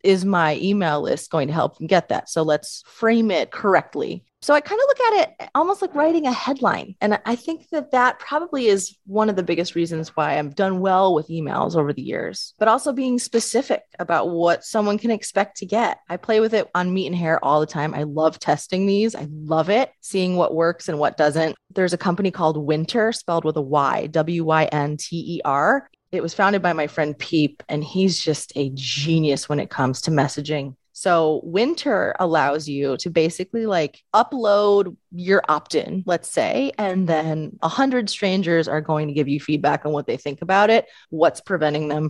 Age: 30-49